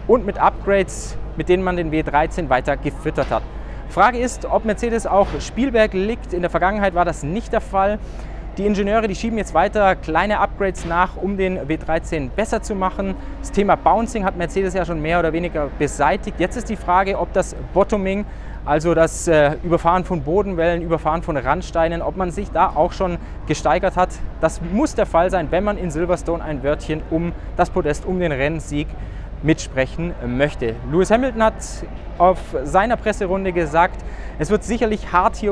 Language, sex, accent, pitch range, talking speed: German, male, German, 160-205 Hz, 180 wpm